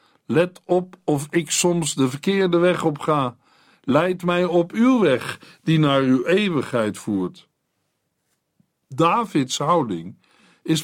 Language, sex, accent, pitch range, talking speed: Dutch, male, Dutch, 140-175 Hz, 125 wpm